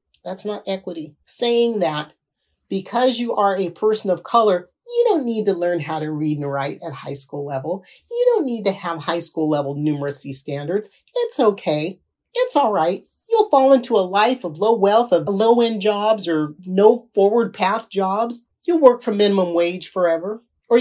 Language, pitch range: English, 170-235 Hz